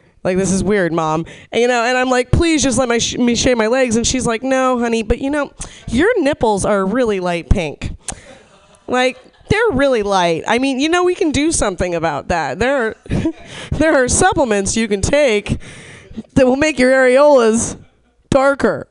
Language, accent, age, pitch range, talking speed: English, American, 20-39, 190-255 Hz, 195 wpm